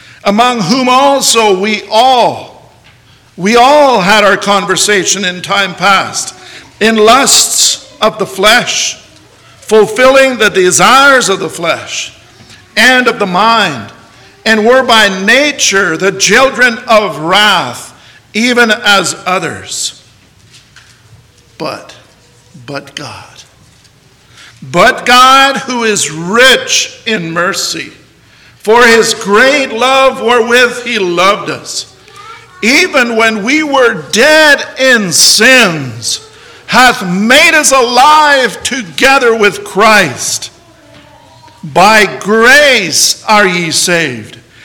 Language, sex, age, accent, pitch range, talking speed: English, male, 60-79, American, 195-255 Hz, 100 wpm